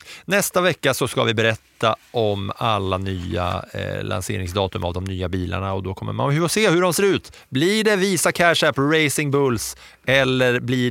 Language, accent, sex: English, Norwegian, male